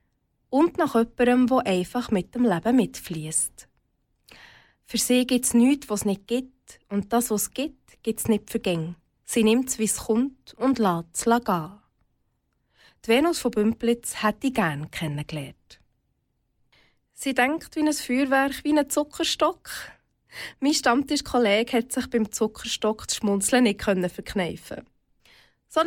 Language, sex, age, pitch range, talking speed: German, female, 20-39, 205-275 Hz, 150 wpm